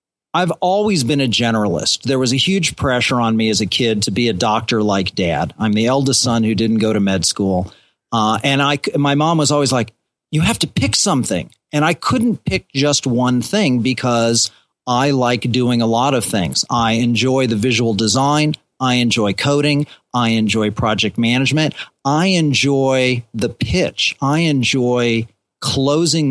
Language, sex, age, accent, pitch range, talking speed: English, male, 40-59, American, 115-140 Hz, 180 wpm